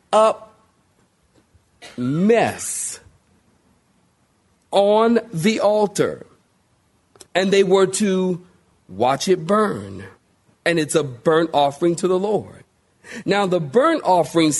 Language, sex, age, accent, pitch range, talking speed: English, male, 40-59, American, 145-195 Hz, 100 wpm